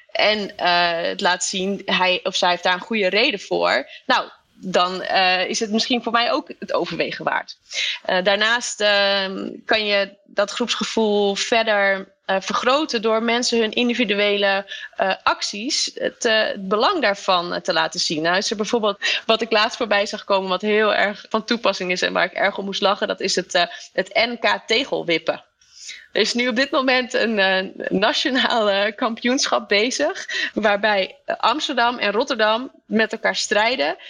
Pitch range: 190-235 Hz